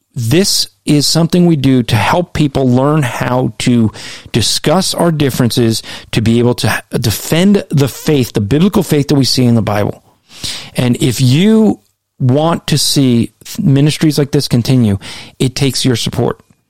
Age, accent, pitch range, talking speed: 40-59, American, 125-165 Hz, 160 wpm